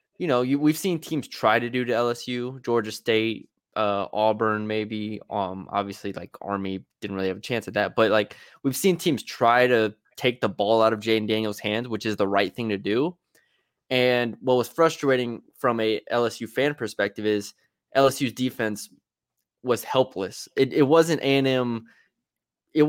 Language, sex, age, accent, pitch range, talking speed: English, male, 20-39, American, 105-125 Hz, 180 wpm